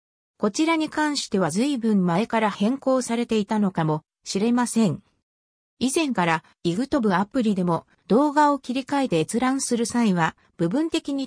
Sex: female